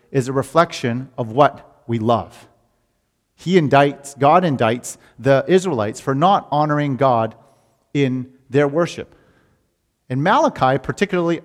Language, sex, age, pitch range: English, male, 40-59, 120-150 Hz